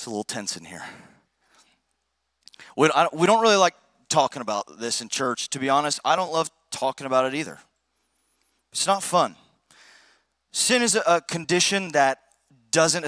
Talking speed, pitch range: 155 wpm, 135-170 Hz